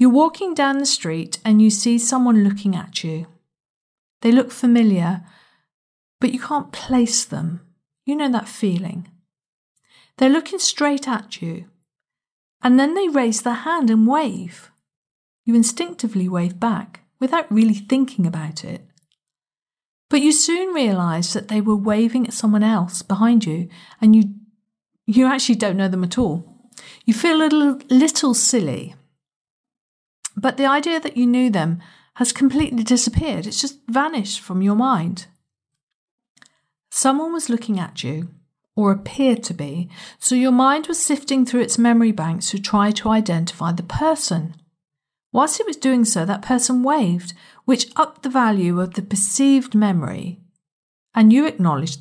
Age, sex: 50-69, female